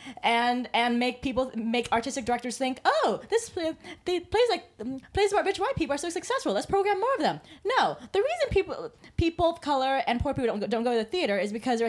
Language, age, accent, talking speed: English, 20-39, American, 240 wpm